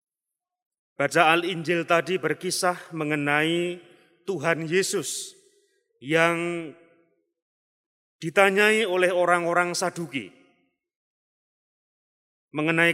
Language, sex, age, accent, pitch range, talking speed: Indonesian, male, 30-49, native, 150-205 Hz, 60 wpm